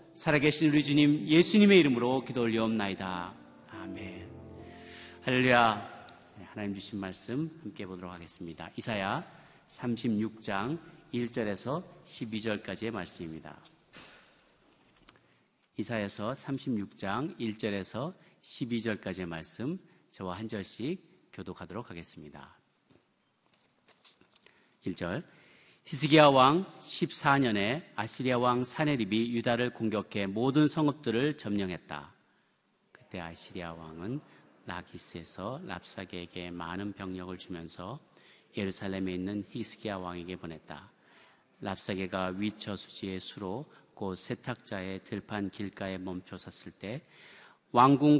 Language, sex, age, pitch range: Korean, male, 40-59, 95-130 Hz